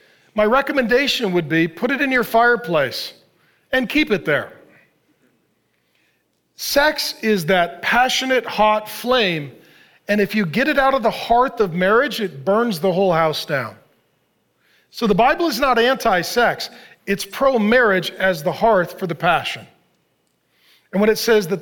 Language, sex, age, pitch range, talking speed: English, male, 40-59, 175-235 Hz, 155 wpm